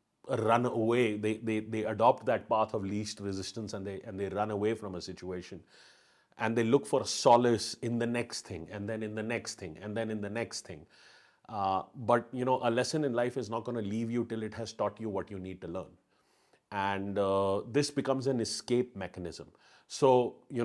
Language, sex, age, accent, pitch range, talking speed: English, male, 30-49, Indian, 105-125 Hz, 215 wpm